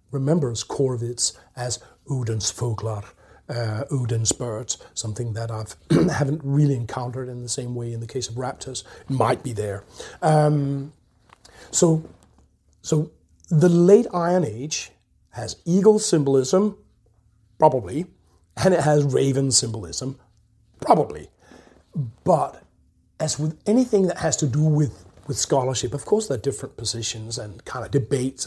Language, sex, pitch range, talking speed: English, male, 115-150 Hz, 140 wpm